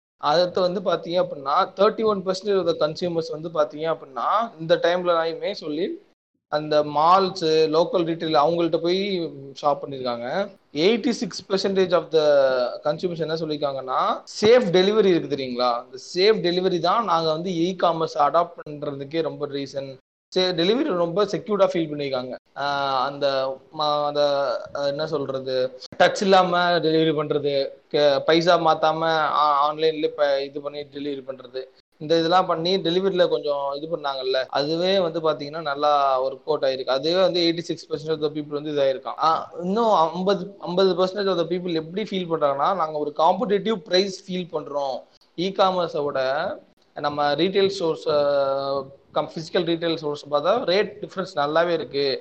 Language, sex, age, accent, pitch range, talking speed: Tamil, male, 20-39, native, 145-185 Hz, 115 wpm